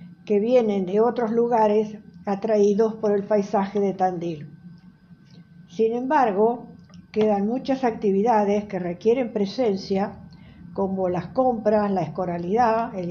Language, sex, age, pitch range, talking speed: Spanish, female, 60-79, 185-230 Hz, 115 wpm